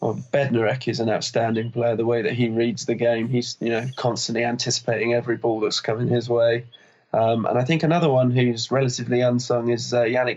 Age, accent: 20-39, British